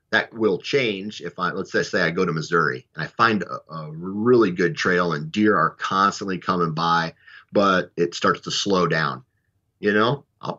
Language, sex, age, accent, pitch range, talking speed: English, male, 30-49, American, 85-100 Hz, 200 wpm